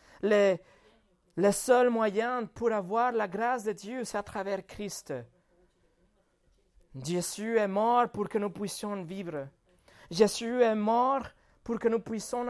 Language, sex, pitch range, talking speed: French, male, 185-235 Hz, 140 wpm